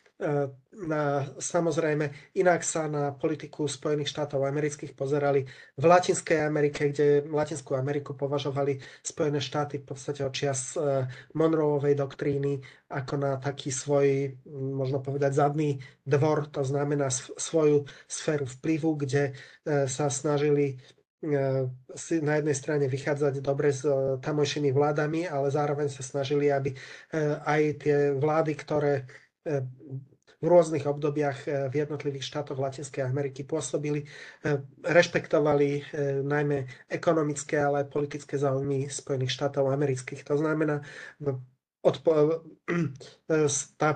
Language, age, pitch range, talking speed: Slovak, 30-49, 140-150 Hz, 110 wpm